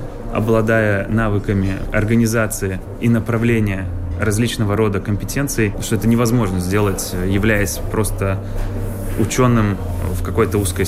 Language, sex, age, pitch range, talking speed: Russian, male, 20-39, 95-110 Hz, 100 wpm